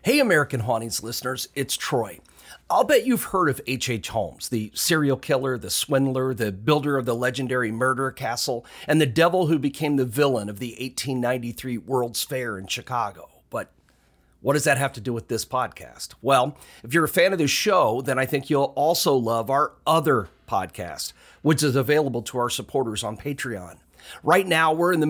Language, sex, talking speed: English, male, 190 wpm